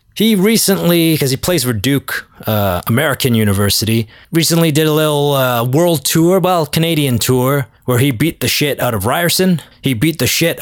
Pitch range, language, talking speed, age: 110-145 Hz, English, 180 wpm, 20-39